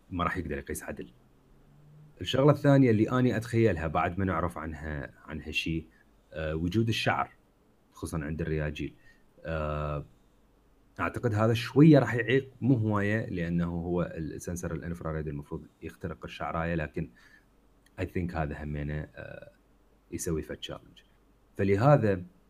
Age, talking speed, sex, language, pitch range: 30-49, 120 wpm, male, Arabic, 80-105 Hz